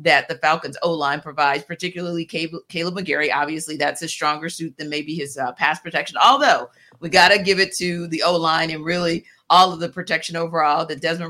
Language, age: English, 40-59